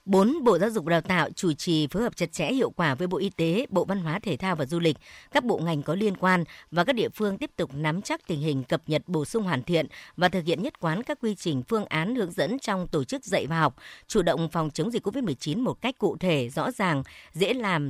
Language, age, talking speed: Vietnamese, 60-79, 270 wpm